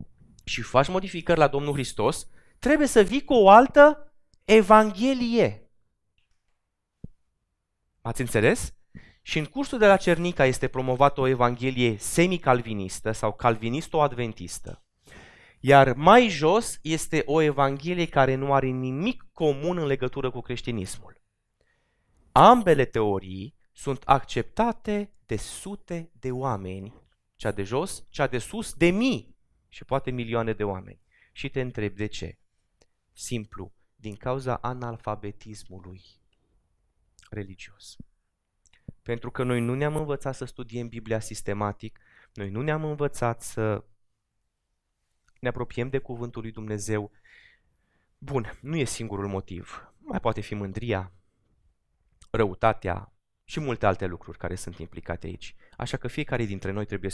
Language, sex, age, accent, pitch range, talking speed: Romanian, male, 20-39, native, 100-140 Hz, 125 wpm